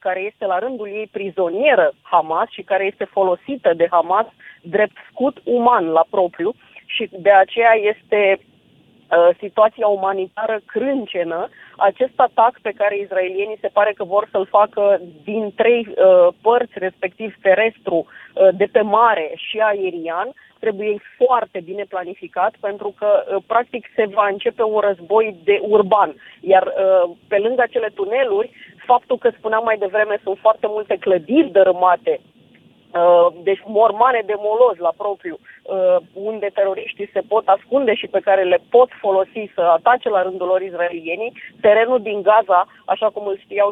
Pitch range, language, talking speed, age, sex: 190-225 Hz, Romanian, 150 wpm, 30-49, female